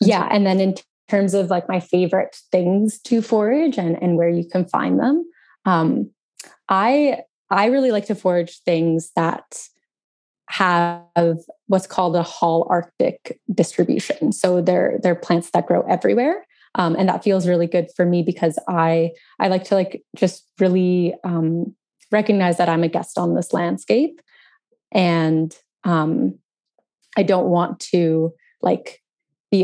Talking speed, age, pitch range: 155 wpm, 20-39, 170-195 Hz